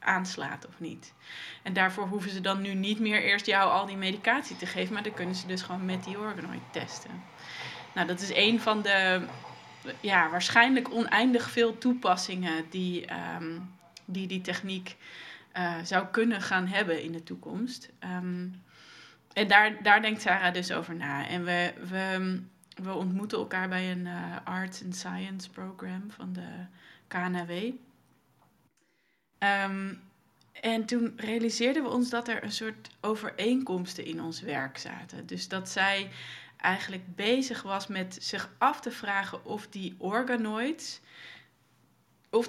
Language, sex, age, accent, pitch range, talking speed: Dutch, female, 20-39, Dutch, 185-225 Hz, 145 wpm